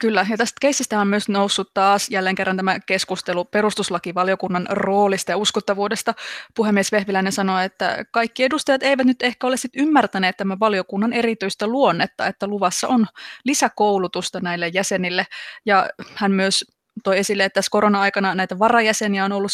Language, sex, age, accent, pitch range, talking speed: Finnish, female, 20-39, native, 185-215 Hz, 155 wpm